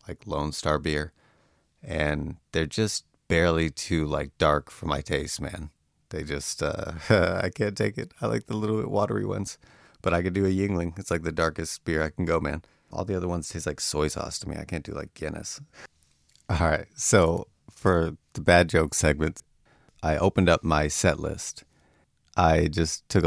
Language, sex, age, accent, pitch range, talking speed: English, male, 30-49, American, 75-90 Hz, 195 wpm